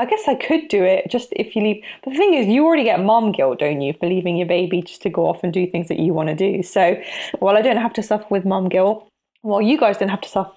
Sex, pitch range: female, 175-205 Hz